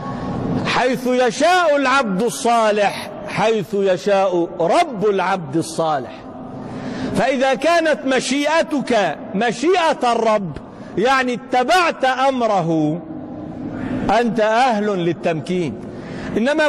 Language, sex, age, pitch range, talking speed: Arabic, male, 50-69, 215-270 Hz, 75 wpm